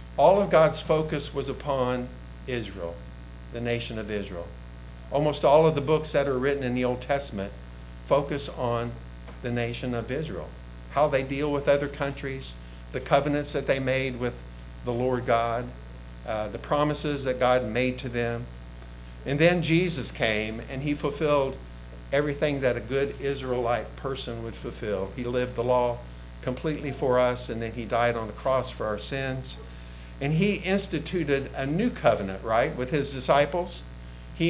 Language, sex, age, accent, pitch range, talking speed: English, male, 50-69, American, 95-140 Hz, 165 wpm